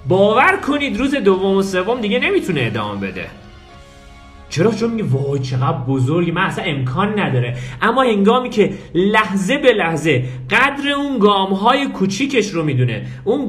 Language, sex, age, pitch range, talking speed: Persian, male, 40-59, 140-215 Hz, 145 wpm